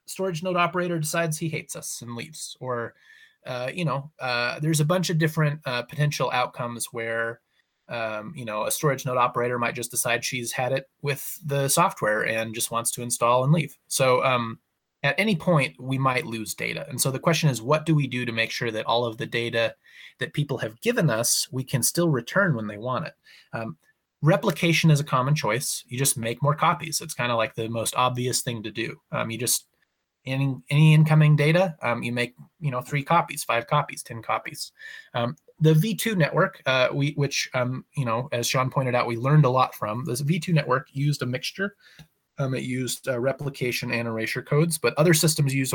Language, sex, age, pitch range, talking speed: English, male, 20-39, 120-160 Hz, 215 wpm